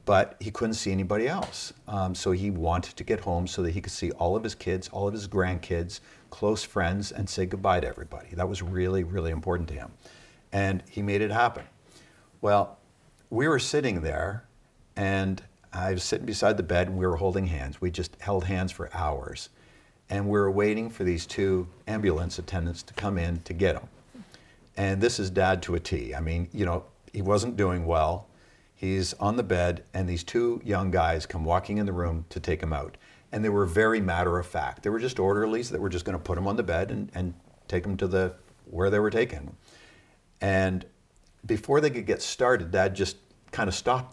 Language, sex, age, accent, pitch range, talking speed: English, male, 50-69, American, 90-105 Hz, 210 wpm